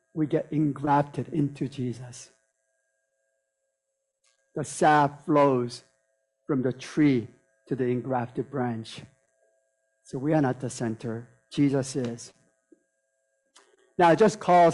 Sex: male